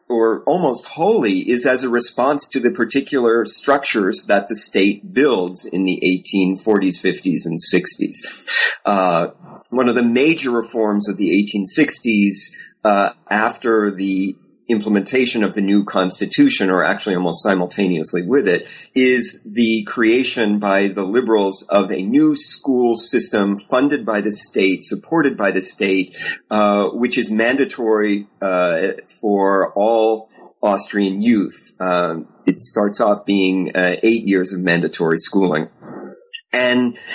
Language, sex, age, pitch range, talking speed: English, male, 40-59, 100-130 Hz, 135 wpm